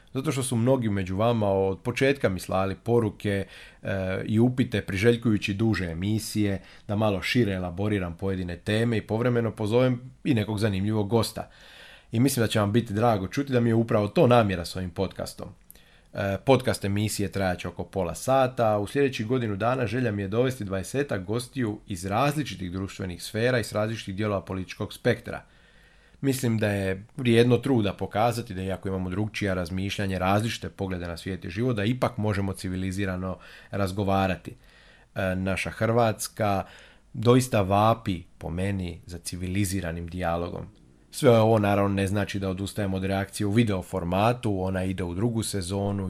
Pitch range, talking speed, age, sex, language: 95-115 Hz, 160 wpm, 30-49, male, Croatian